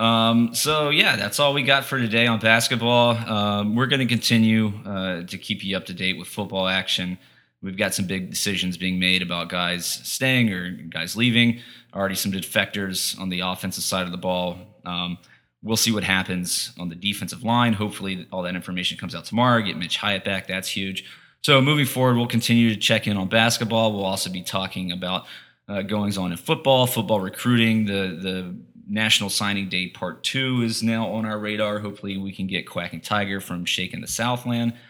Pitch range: 95-115 Hz